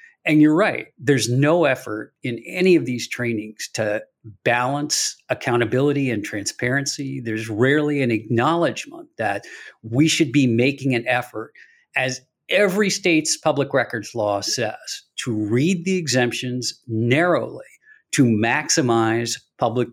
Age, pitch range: 50-69, 115-160 Hz